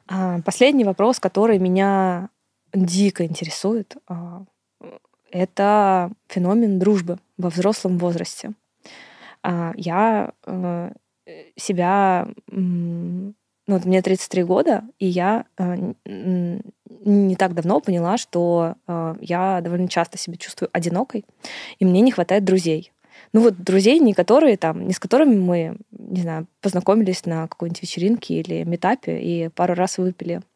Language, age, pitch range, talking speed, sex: Russian, 20-39, 175-205 Hz, 115 wpm, female